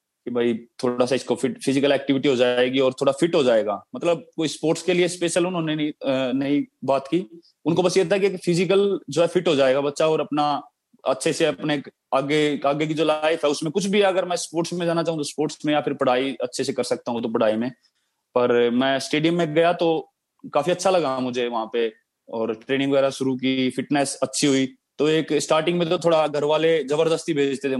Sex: male